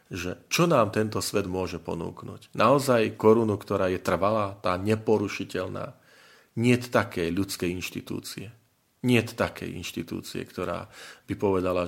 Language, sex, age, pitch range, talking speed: Slovak, male, 40-59, 90-110 Hz, 120 wpm